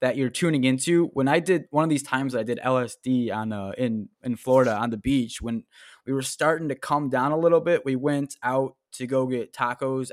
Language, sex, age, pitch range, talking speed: English, male, 20-39, 125-165 Hz, 230 wpm